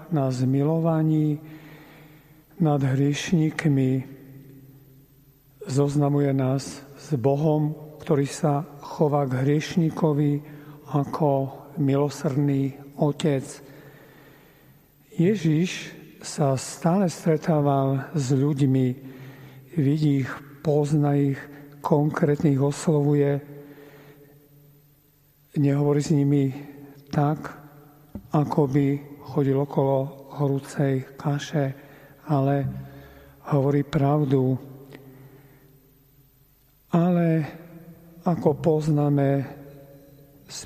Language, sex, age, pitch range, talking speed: Slovak, male, 50-69, 140-150 Hz, 65 wpm